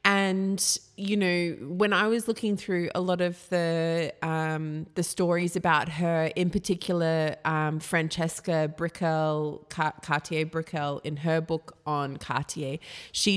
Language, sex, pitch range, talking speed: English, female, 150-175 Hz, 125 wpm